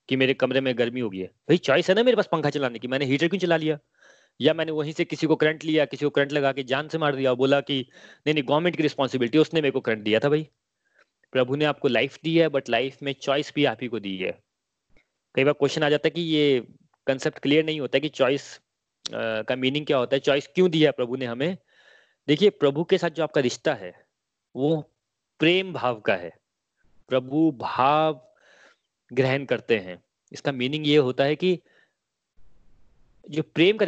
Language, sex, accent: Hindi, male, native